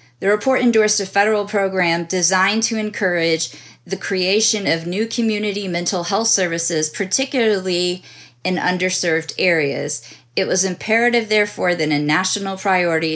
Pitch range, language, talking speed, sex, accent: 155-195 Hz, English, 130 wpm, female, American